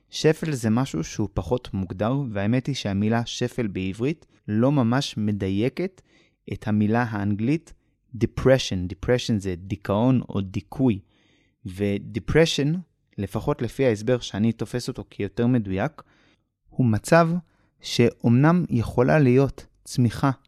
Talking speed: 110 wpm